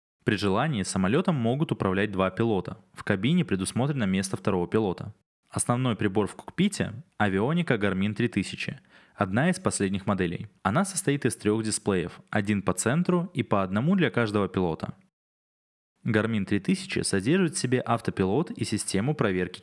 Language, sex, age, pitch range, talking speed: Russian, male, 20-39, 100-130 Hz, 145 wpm